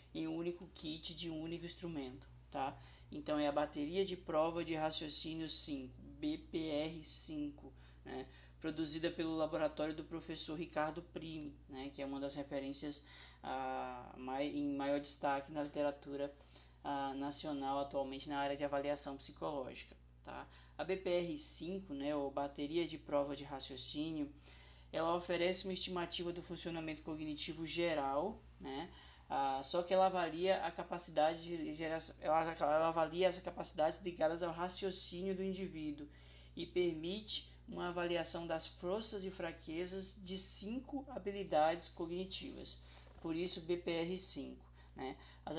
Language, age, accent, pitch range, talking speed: Portuguese, 20-39, Brazilian, 140-175 Hz, 125 wpm